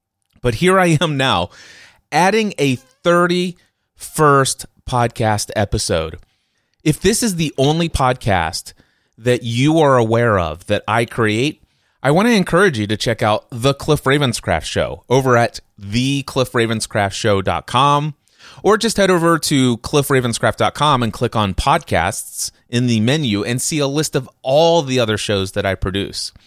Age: 30-49